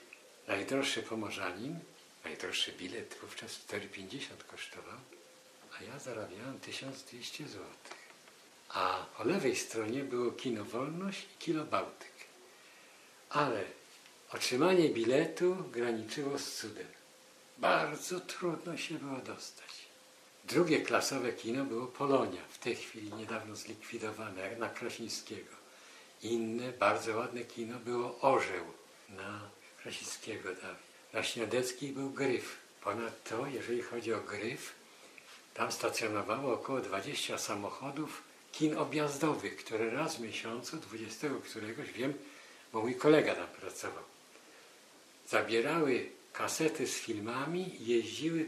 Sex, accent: male, native